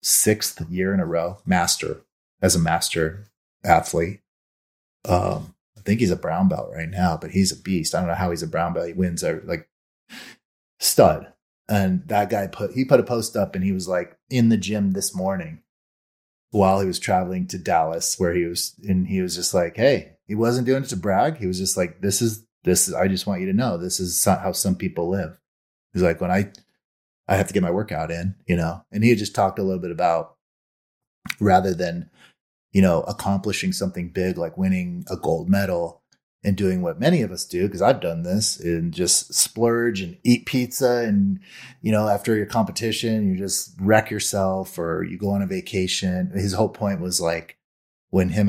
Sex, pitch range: male, 90-115 Hz